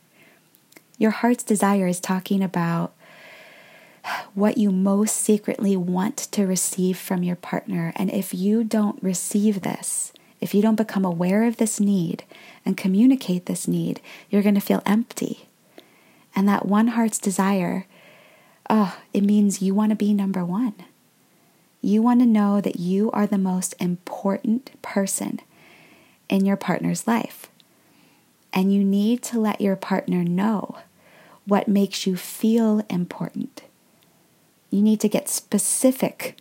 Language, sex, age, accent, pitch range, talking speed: English, female, 20-39, American, 190-220 Hz, 140 wpm